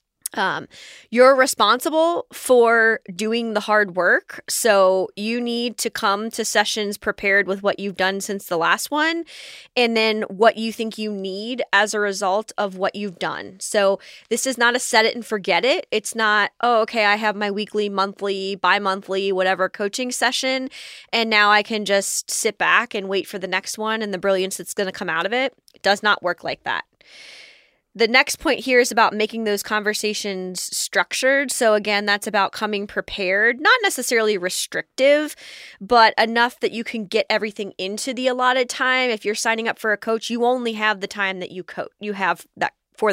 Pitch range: 200-235 Hz